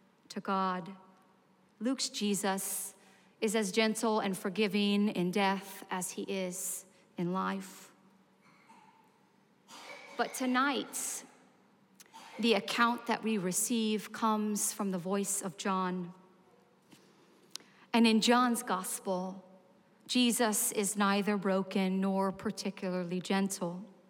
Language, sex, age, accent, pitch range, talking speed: English, female, 40-59, American, 190-215 Hz, 95 wpm